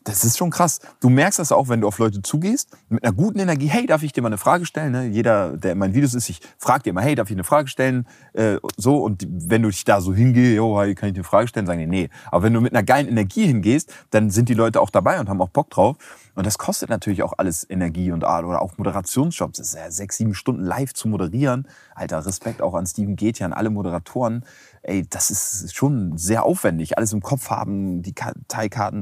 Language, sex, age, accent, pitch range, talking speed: German, male, 30-49, German, 95-125 Hz, 250 wpm